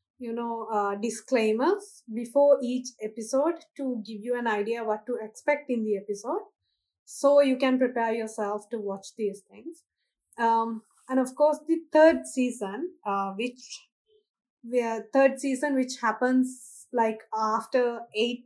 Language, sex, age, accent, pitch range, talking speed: English, female, 20-39, Indian, 225-275 Hz, 145 wpm